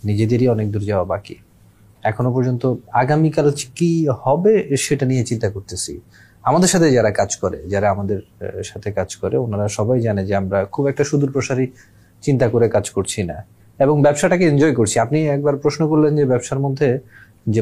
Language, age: Bengali, 30-49